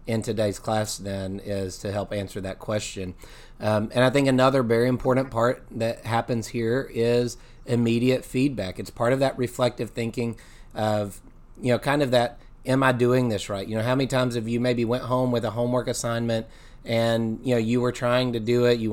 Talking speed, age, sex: 205 wpm, 30-49, male